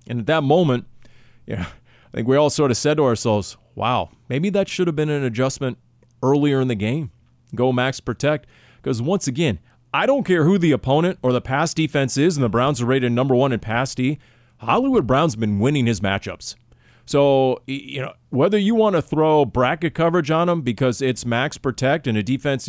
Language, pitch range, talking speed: English, 115-135 Hz, 210 wpm